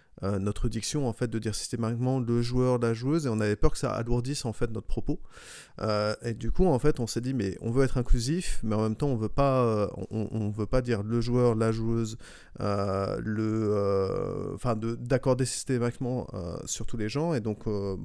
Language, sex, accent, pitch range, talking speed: French, male, French, 110-130 Hz, 225 wpm